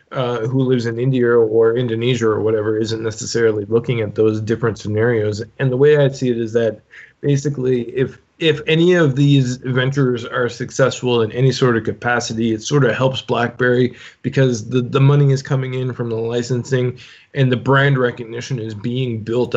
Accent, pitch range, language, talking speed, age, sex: American, 115-140 Hz, English, 185 wpm, 20-39, male